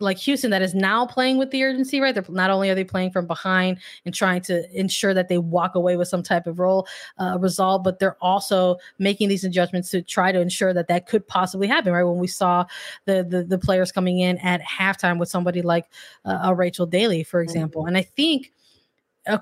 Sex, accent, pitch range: female, American, 185-230 Hz